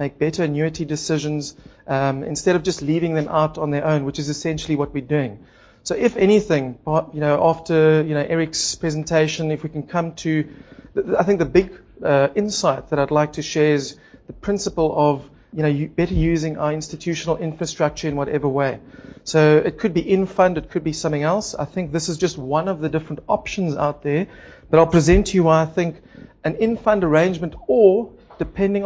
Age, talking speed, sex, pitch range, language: 40-59, 195 wpm, male, 150-185 Hz, English